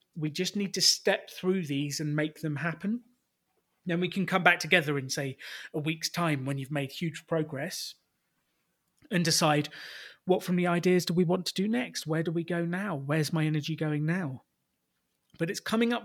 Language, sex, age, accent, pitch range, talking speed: English, male, 30-49, British, 145-175 Hz, 200 wpm